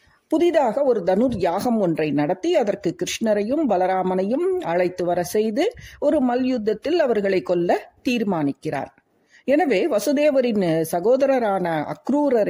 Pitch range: 195-270 Hz